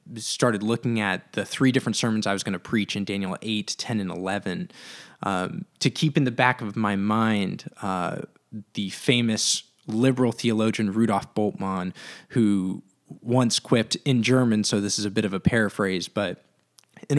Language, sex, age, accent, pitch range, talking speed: English, male, 20-39, American, 100-125 Hz, 170 wpm